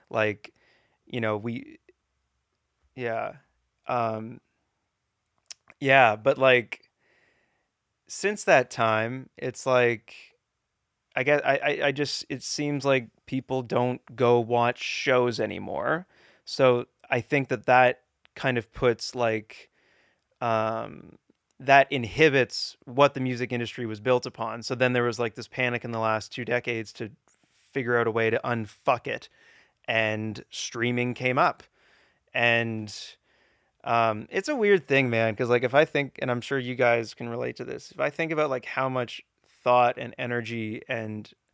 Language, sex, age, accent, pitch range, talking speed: English, male, 20-39, American, 115-130 Hz, 150 wpm